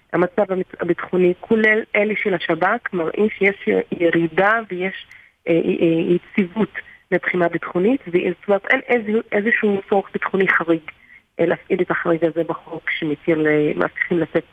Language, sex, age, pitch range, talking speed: Hebrew, female, 30-49, 170-215 Hz, 110 wpm